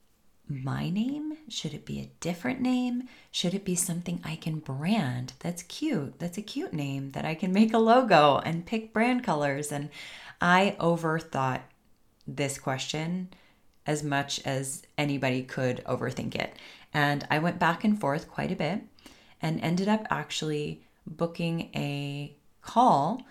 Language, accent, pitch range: English, American, 140-180 Hz